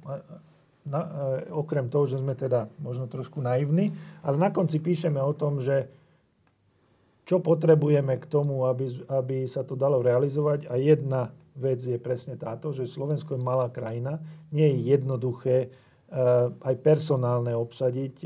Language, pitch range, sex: Slovak, 125-150 Hz, male